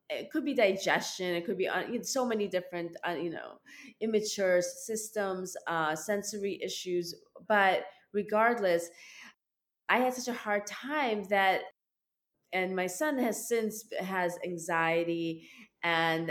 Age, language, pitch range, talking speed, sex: 20-39, English, 165-205 Hz, 130 wpm, female